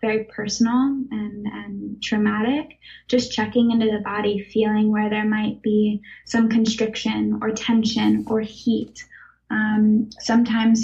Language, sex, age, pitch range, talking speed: English, female, 10-29, 210-235 Hz, 125 wpm